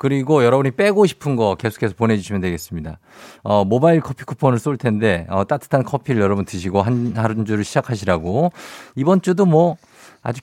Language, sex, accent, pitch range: Korean, male, native, 100-150 Hz